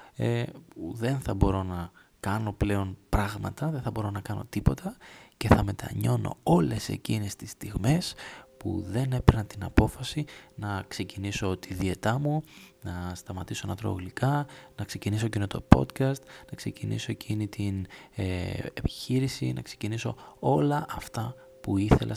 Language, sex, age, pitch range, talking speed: Greek, male, 20-39, 100-130 Hz, 145 wpm